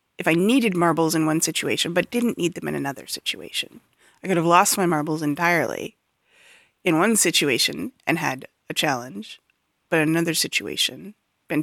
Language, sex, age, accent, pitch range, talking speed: English, female, 30-49, American, 170-230 Hz, 170 wpm